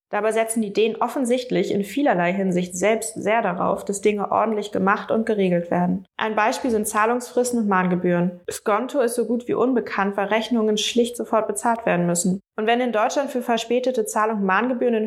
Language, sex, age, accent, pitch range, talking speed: Danish, female, 20-39, German, 200-240 Hz, 185 wpm